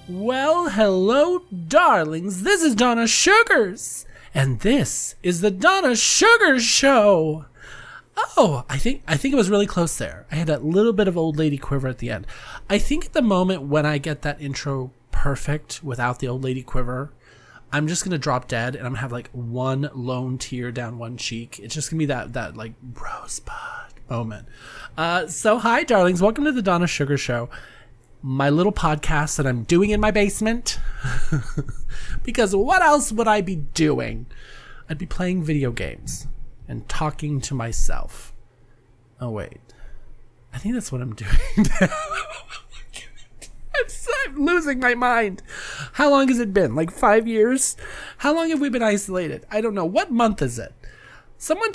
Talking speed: 175 wpm